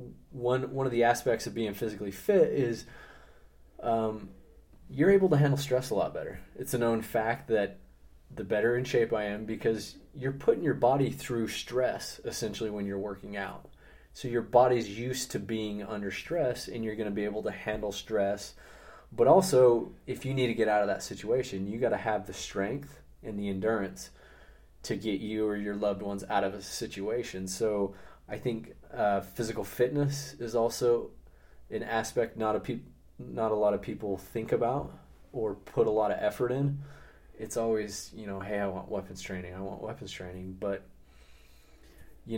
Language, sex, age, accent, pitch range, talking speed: English, male, 20-39, American, 100-120 Hz, 185 wpm